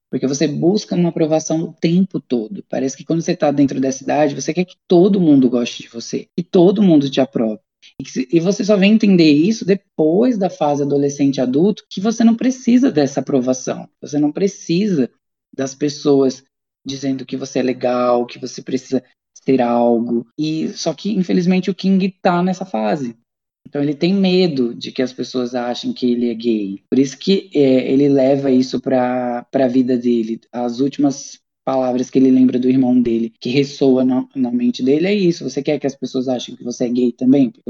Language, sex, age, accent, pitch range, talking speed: Portuguese, female, 20-39, Brazilian, 130-175 Hz, 195 wpm